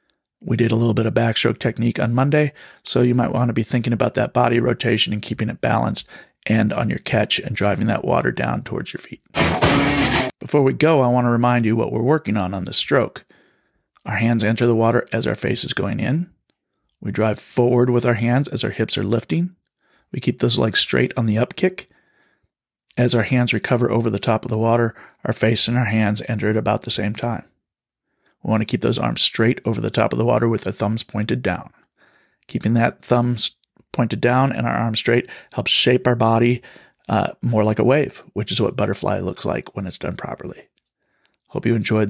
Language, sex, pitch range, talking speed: English, male, 110-130 Hz, 220 wpm